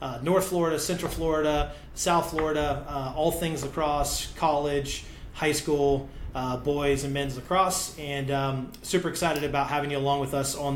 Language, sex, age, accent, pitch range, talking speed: English, male, 30-49, American, 140-170 Hz, 165 wpm